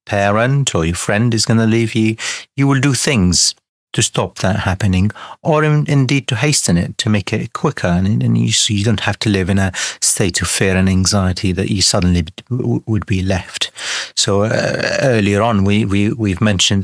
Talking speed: 205 wpm